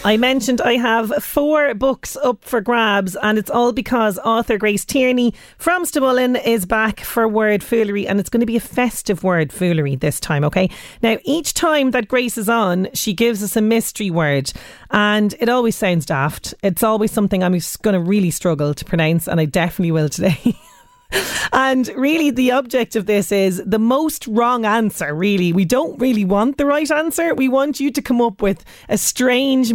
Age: 30-49